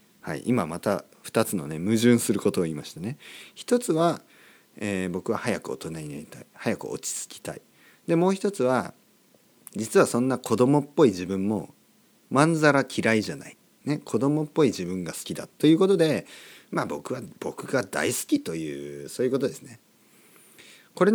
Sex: male